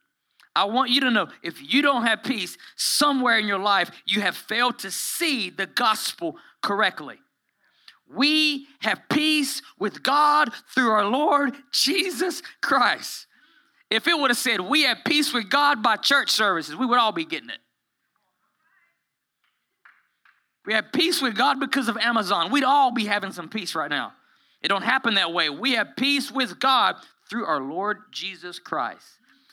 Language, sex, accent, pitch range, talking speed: English, male, American, 175-275 Hz, 165 wpm